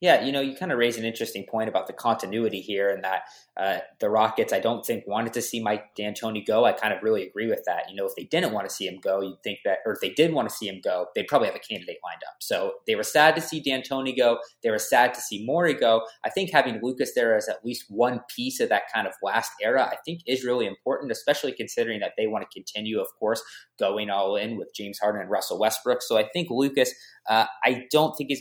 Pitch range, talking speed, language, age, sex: 110-150 Hz, 270 wpm, English, 20-39, male